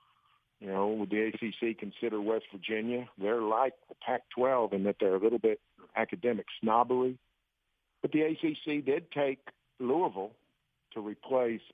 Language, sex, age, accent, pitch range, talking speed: English, male, 50-69, American, 95-120 Hz, 145 wpm